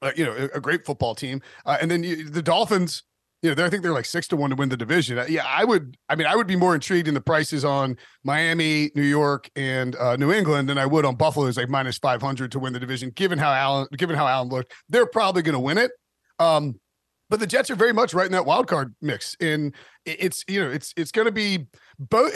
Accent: American